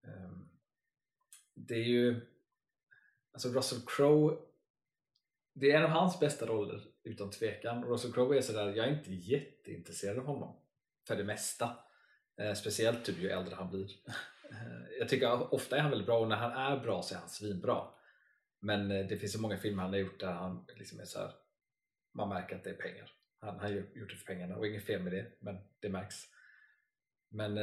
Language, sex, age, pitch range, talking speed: Swedish, male, 30-49, 100-125 Hz, 190 wpm